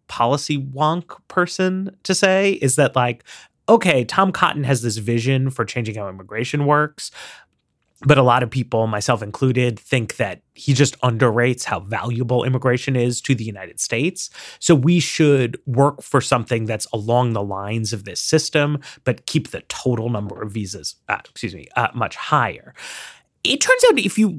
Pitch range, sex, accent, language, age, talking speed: 115-160 Hz, male, American, English, 30-49, 170 wpm